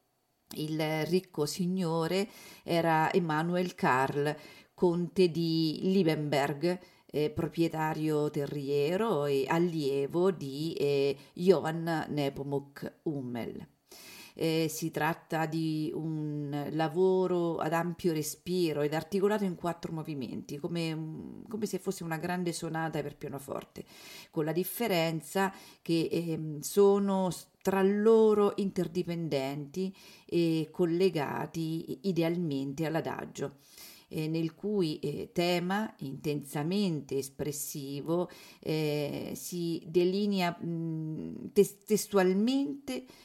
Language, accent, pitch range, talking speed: Italian, native, 150-185 Hz, 90 wpm